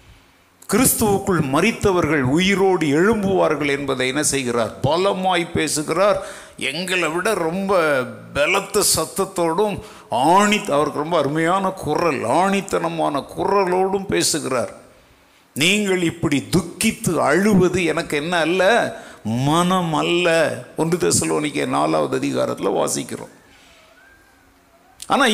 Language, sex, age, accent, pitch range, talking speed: Tamil, male, 50-69, native, 140-200 Hz, 85 wpm